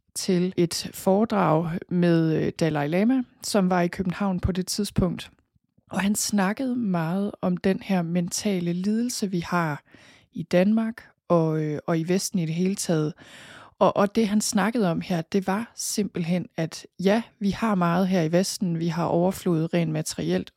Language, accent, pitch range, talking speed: Danish, native, 175-205 Hz, 165 wpm